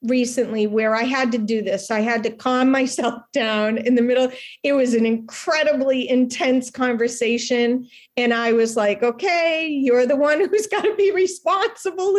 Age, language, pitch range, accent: 40-59, English, 225-275 Hz, American